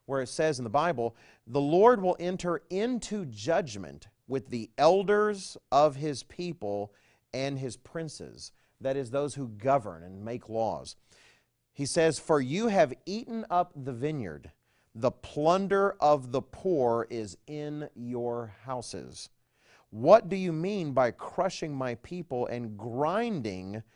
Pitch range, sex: 110-150 Hz, male